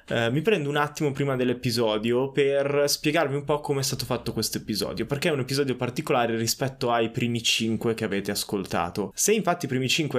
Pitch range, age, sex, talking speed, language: 110-145 Hz, 20-39, male, 200 wpm, Italian